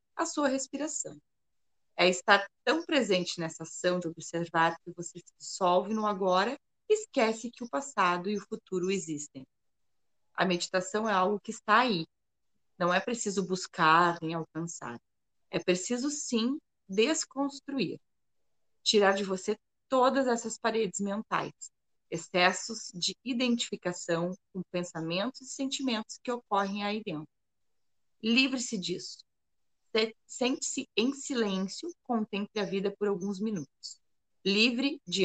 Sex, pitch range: female, 180-240 Hz